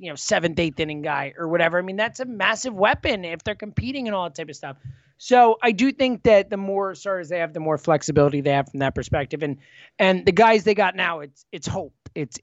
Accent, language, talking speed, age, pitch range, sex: American, English, 250 wpm, 20-39, 170-240 Hz, male